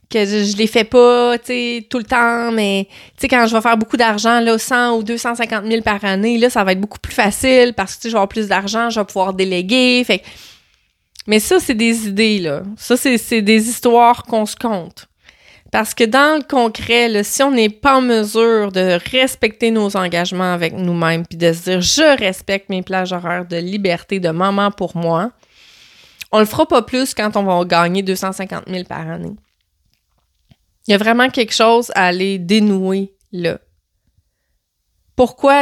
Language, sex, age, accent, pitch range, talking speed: French, female, 30-49, Canadian, 185-235 Hz, 195 wpm